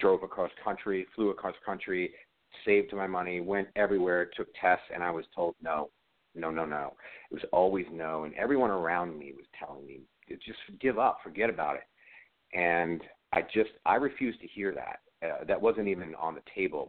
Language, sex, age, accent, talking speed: English, male, 50-69, American, 190 wpm